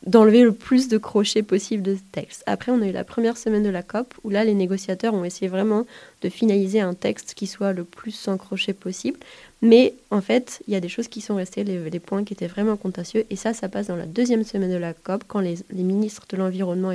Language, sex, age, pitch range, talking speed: French, female, 20-39, 185-220 Hz, 255 wpm